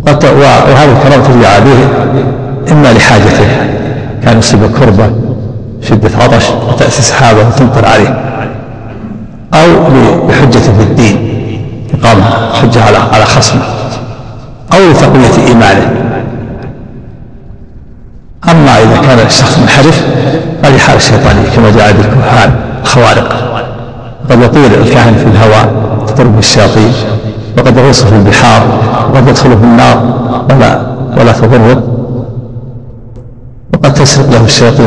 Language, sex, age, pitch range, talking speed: Arabic, male, 60-79, 115-130 Hz, 105 wpm